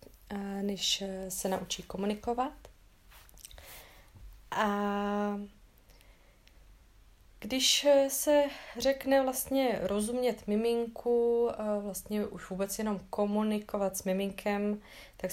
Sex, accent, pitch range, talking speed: female, native, 175-205 Hz, 75 wpm